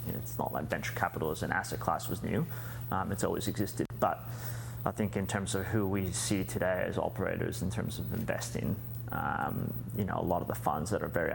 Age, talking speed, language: 30-49, 220 wpm, English